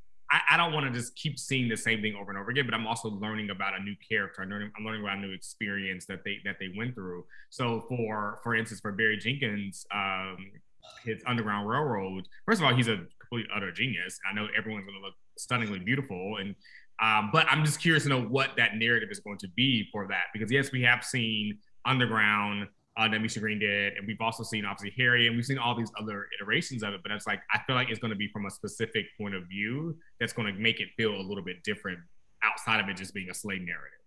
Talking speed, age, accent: 240 wpm, 20-39, American